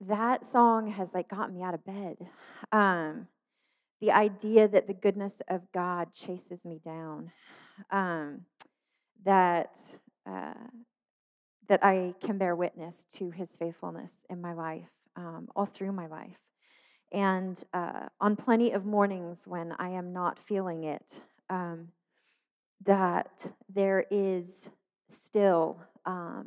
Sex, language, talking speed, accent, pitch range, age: female, English, 130 wpm, American, 170-200 Hz, 30-49